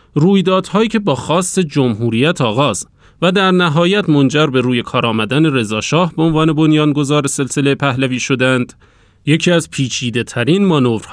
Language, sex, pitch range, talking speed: Persian, male, 120-165 Hz, 140 wpm